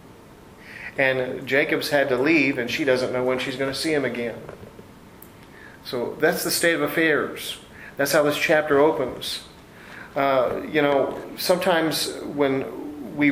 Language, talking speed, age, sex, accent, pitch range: English, 150 wpm, 40-59, male, American, 125-145 Hz